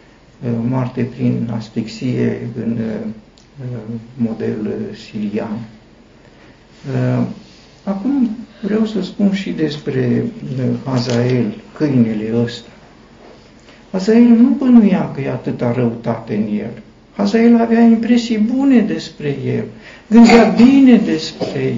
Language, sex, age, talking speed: Romanian, male, 60-79, 90 wpm